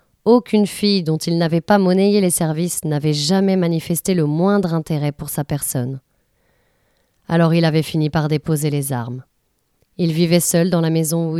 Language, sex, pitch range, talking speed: French, female, 160-190 Hz, 175 wpm